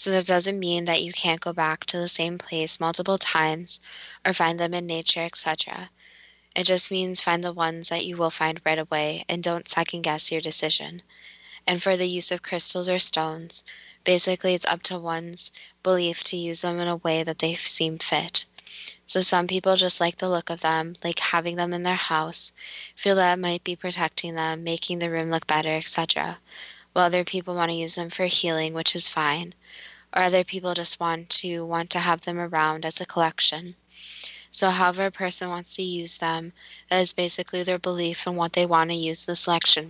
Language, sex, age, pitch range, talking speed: English, female, 10-29, 165-180 Hz, 205 wpm